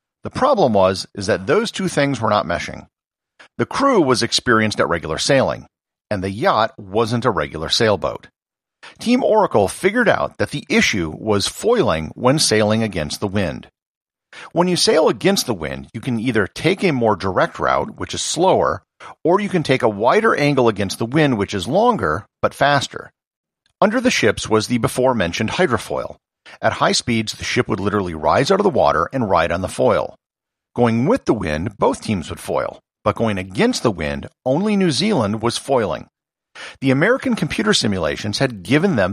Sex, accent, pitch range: male, American, 105-155 Hz